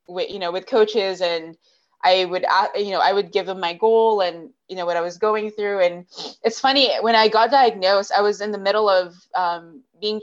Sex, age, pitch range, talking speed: female, 20-39, 180-220 Hz, 225 wpm